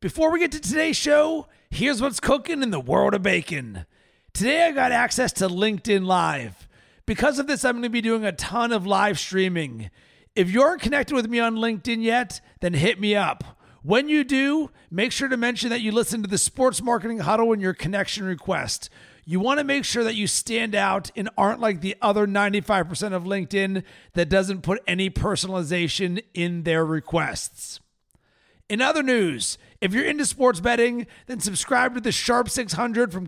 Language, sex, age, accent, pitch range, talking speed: English, male, 40-59, American, 190-240 Hz, 190 wpm